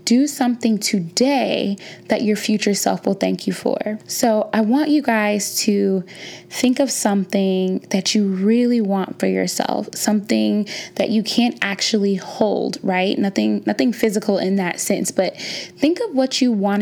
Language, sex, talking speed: English, female, 160 wpm